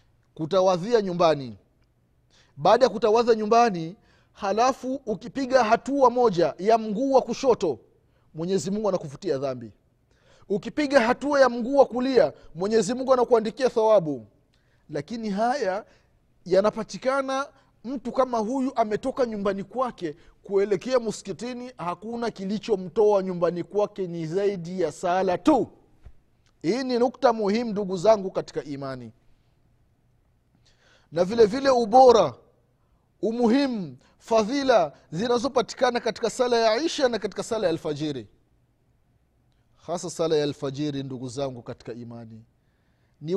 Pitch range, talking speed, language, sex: 165-255 Hz, 110 wpm, Swahili, male